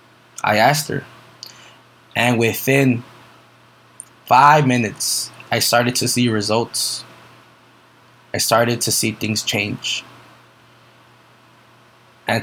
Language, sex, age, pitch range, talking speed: English, male, 20-39, 110-130 Hz, 90 wpm